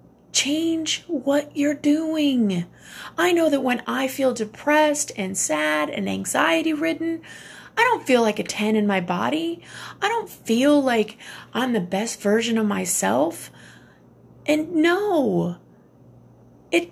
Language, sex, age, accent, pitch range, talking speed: English, female, 30-49, American, 230-330 Hz, 135 wpm